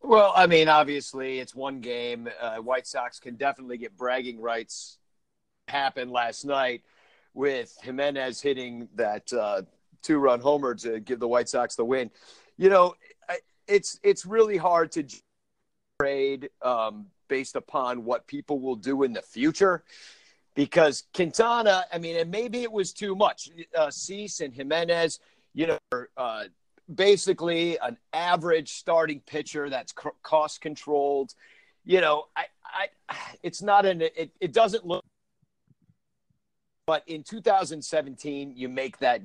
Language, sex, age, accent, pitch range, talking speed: English, male, 40-59, American, 130-185 Hz, 140 wpm